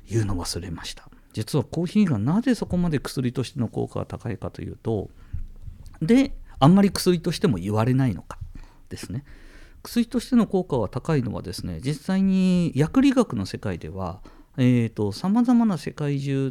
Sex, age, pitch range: male, 50-69, 105-170 Hz